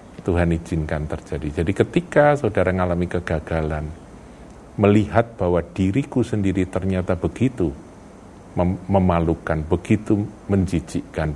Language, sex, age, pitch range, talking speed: Indonesian, male, 50-69, 85-110 Hz, 90 wpm